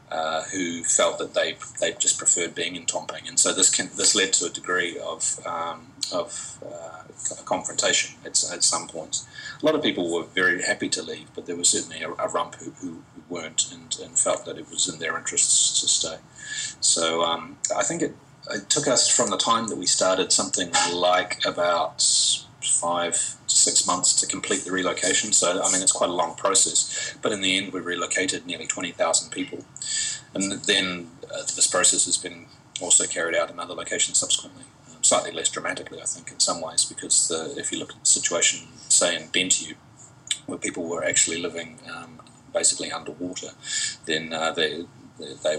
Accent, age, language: Australian, 30-49, English